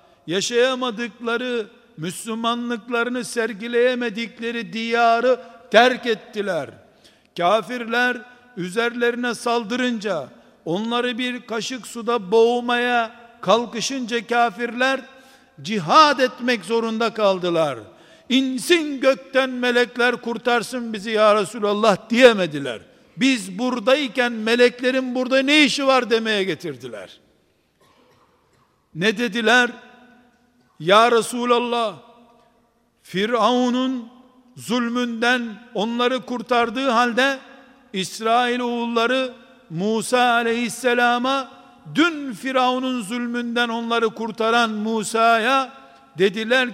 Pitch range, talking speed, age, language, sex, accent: 225-250 Hz, 75 wpm, 60-79, Turkish, male, native